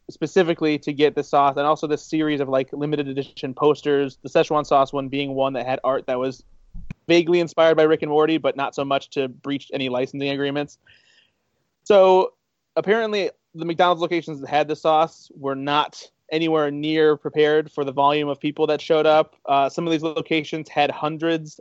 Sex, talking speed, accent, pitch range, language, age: male, 190 wpm, American, 140-160 Hz, English, 20-39